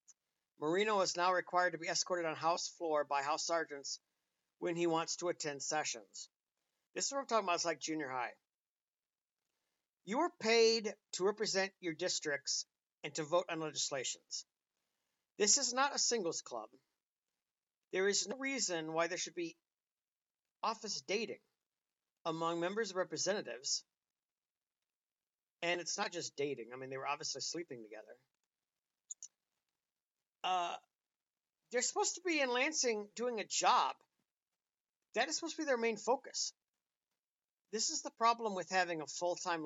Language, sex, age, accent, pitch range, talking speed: English, male, 50-69, American, 155-215 Hz, 150 wpm